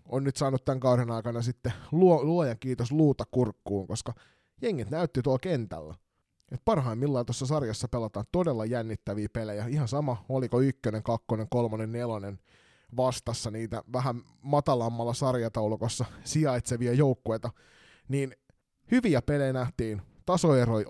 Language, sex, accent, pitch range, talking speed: Finnish, male, native, 110-140 Hz, 125 wpm